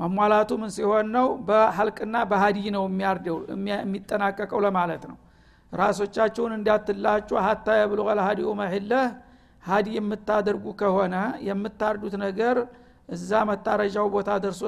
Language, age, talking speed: Amharic, 60-79, 100 wpm